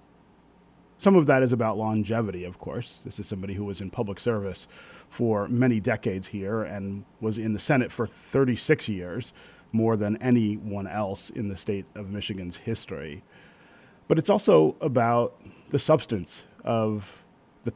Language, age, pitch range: English, 30-49, 105-130 Hz